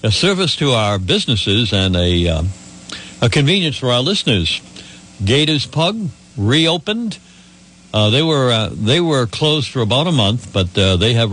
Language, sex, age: English, male, 60-79